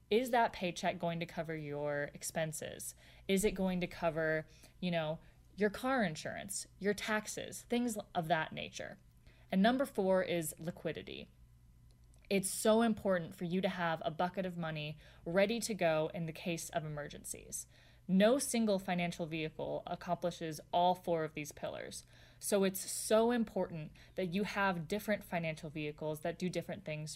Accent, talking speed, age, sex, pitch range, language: American, 160 wpm, 20-39, female, 160-200 Hz, English